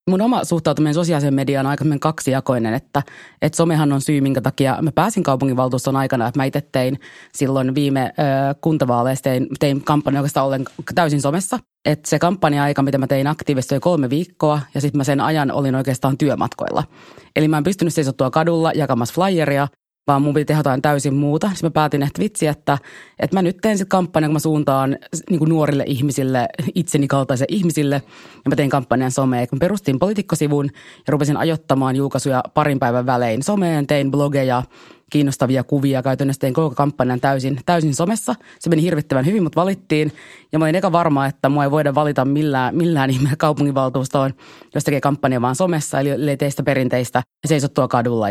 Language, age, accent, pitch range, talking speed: Finnish, 30-49, native, 135-155 Hz, 180 wpm